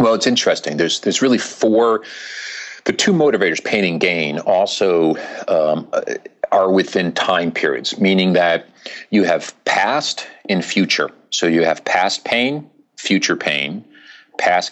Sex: male